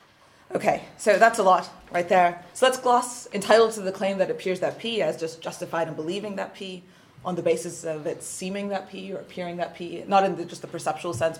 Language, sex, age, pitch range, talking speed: English, female, 20-39, 170-215 Hz, 225 wpm